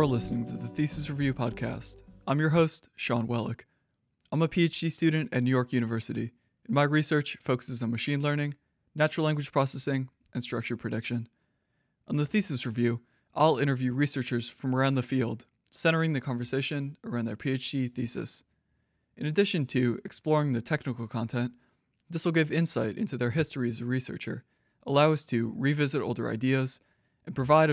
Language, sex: English, male